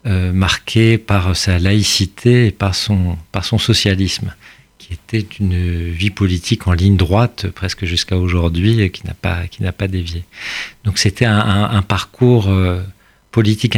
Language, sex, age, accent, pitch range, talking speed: French, male, 50-69, French, 90-105 Hz, 150 wpm